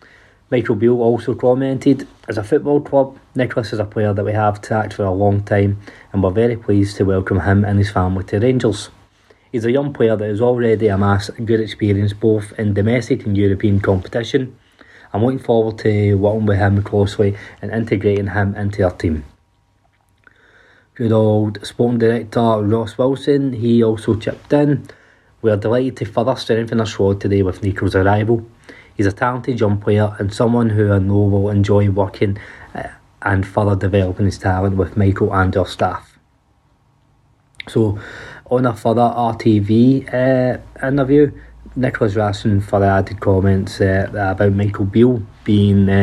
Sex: male